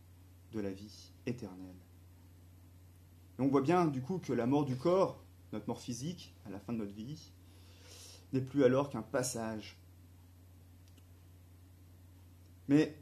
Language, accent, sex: French, French, male